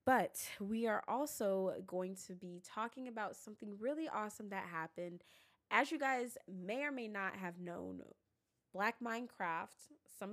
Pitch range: 190-260 Hz